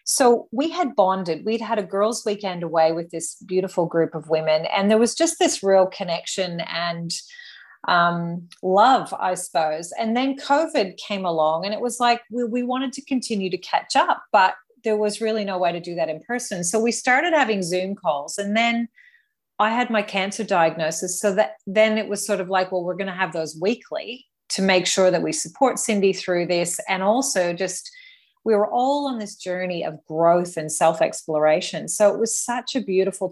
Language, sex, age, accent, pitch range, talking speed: English, female, 30-49, Australian, 175-225 Hz, 200 wpm